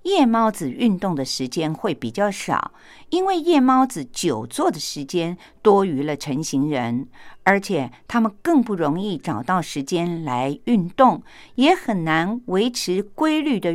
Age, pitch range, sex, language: 50-69, 150-240 Hz, female, Japanese